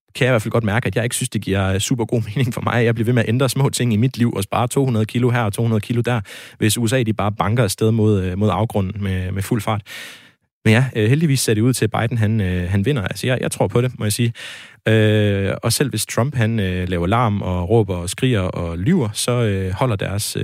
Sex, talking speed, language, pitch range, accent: male, 260 wpm, Danish, 100-120 Hz, native